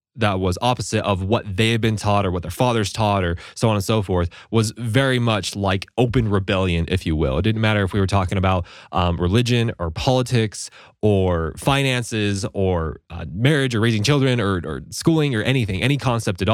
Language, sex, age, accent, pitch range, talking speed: English, male, 20-39, American, 95-125 Hz, 205 wpm